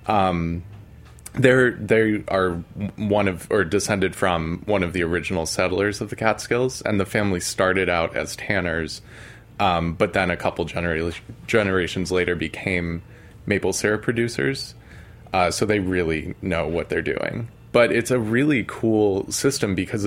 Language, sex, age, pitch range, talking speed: English, male, 20-39, 90-110 Hz, 155 wpm